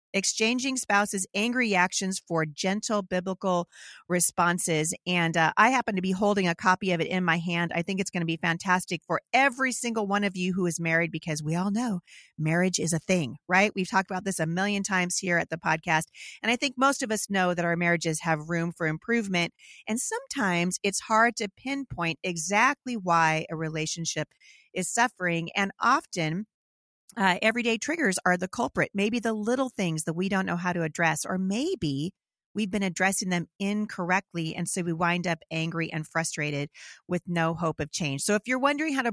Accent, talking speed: American, 200 wpm